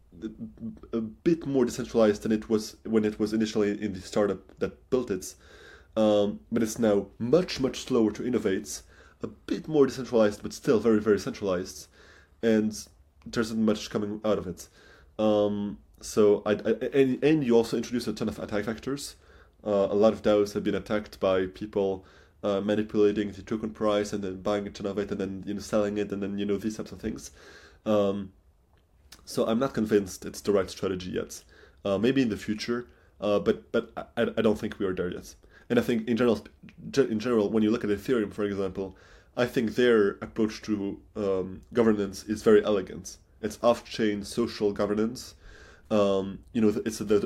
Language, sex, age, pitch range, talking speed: English, male, 20-39, 100-110 Hz, 195 wpm